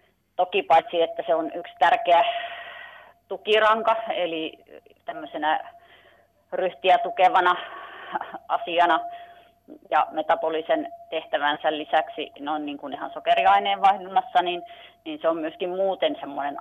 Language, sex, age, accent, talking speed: Finnish, female, 30-49, native, 105 wpm